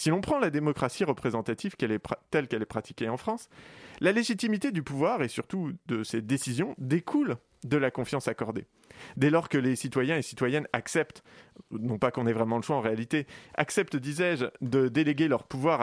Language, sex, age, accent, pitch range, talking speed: French, male, 30-49, French, 115-160 Hz, 185 wpm